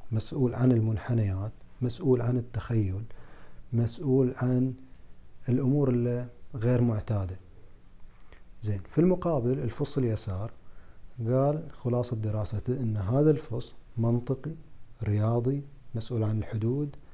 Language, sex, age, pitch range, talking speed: Arabic, male, 40-59, 110-130 Hz, 95 wpm